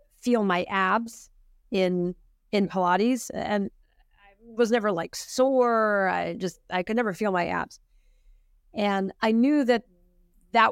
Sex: female